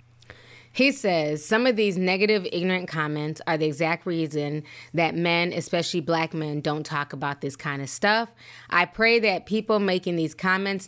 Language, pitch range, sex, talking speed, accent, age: English, 150-205 Hz, female, 170 wpm, American, 20-39